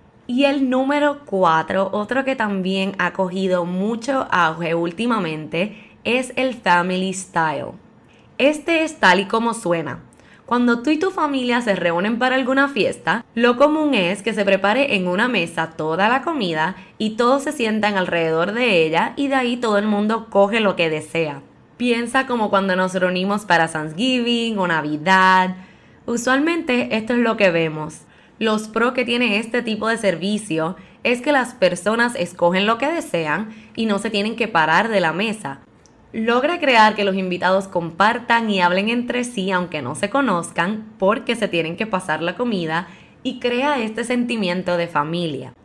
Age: 20-39